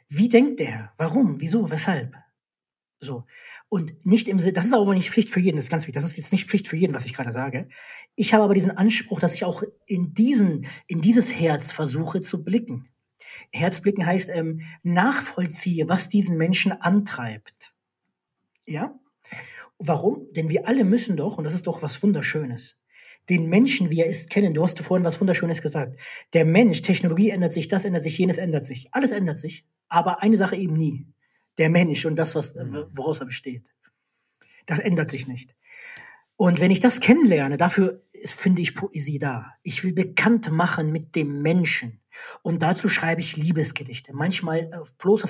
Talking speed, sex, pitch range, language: 185 wpm, male, 155-200 Hz, German